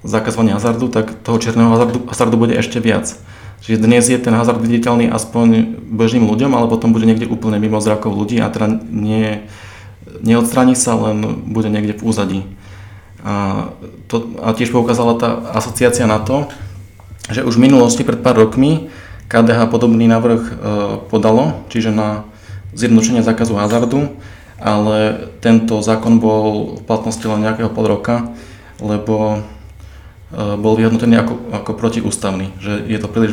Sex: male